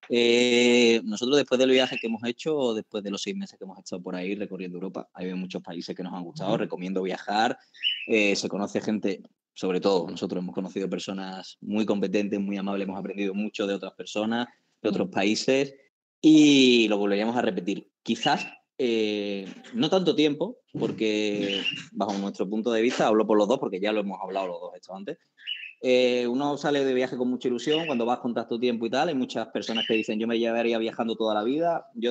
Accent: Spanish